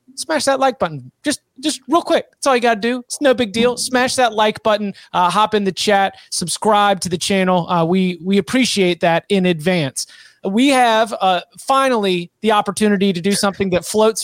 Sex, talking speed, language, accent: male, 205 wpm, English, American